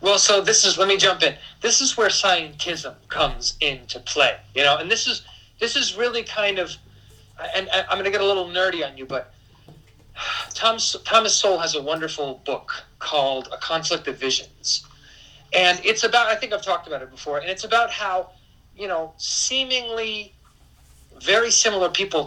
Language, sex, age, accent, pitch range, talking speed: English, male, 40-59, American, 145-200 Hz, 185 wpm